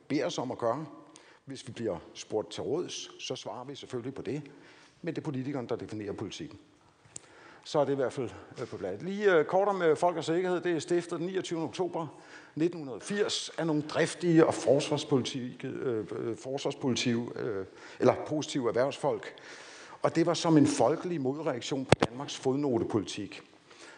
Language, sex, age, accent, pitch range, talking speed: Danish, male, 60-79, native, 130-170 Hz, 165 wpm